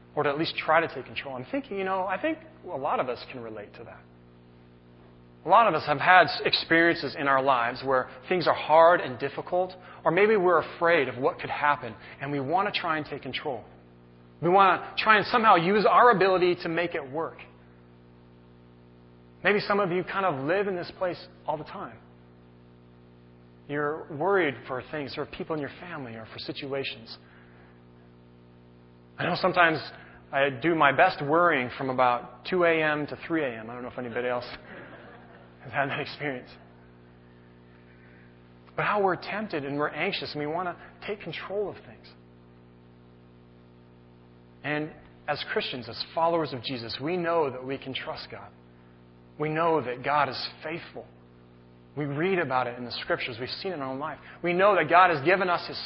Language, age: English, 30-49